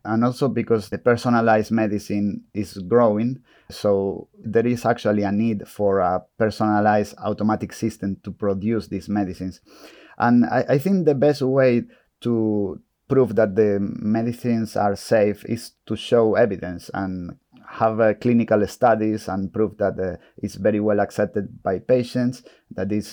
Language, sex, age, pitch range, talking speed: English, male, 30-49, 95-110 Hz, 150 wpm